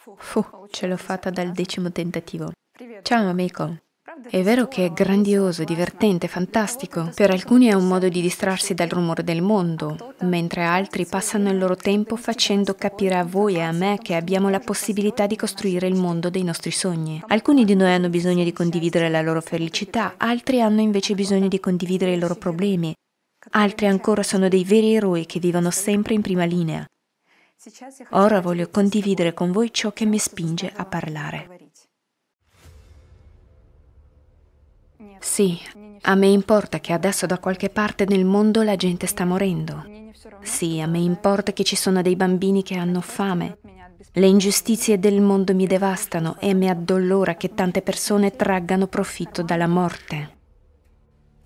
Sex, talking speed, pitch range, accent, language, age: female, 160 wpm, 175-205 Hz, native, Italian, 20-39